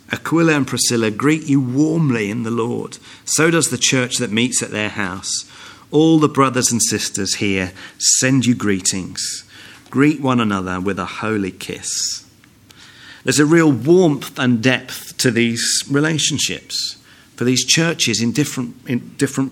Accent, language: British, English